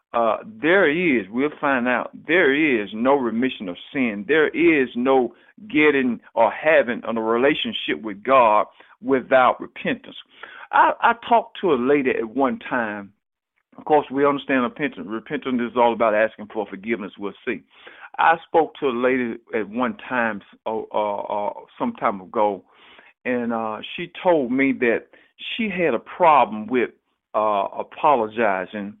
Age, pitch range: 50-69, 115-140 Hz